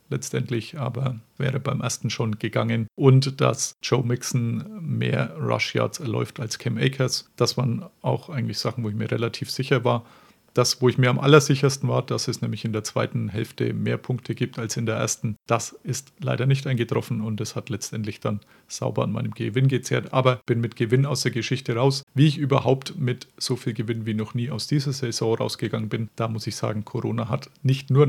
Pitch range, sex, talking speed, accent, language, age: 115-135 Hz, male, 205 wpm, German, German, 40-59